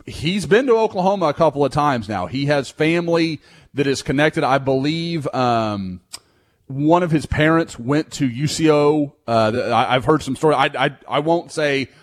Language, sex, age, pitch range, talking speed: English, male, 30-49, 125-150 Hz, 170 wpm